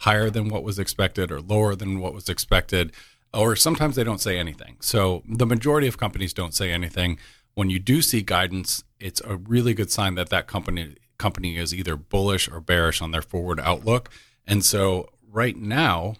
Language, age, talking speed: English, 40-59, 195 wpm